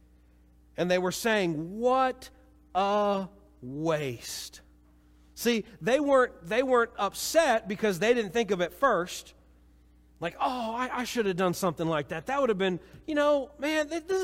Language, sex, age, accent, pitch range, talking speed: English, male, 40-59, American, 165-255 Hz, 160 wpm